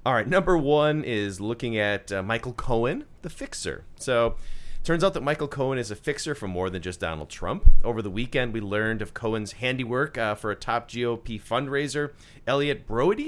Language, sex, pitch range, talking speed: English, male, 105-140 Hz, 195 wpm